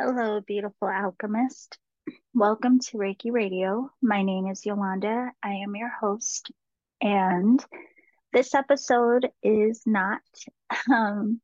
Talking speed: 110 wpm